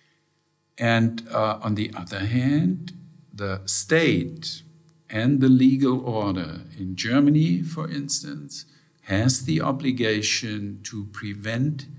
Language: Hungarian